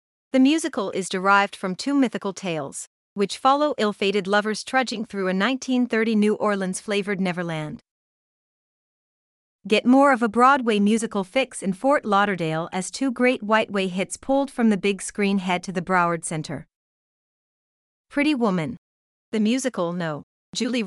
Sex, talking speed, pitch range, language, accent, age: female, 140 wpm, 185-225 Hz, English, American, 40-59